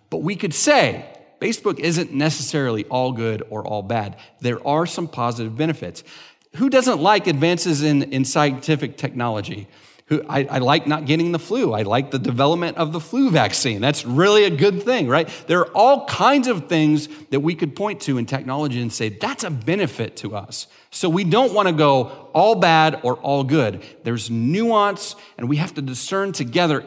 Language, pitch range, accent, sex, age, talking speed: English, 120-165 Hz, American, male, 40-59, 190 wpm